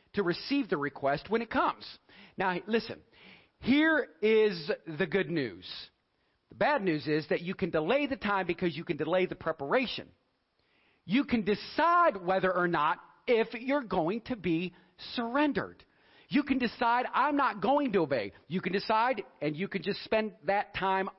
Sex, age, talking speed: male, 40-59, 170 wpm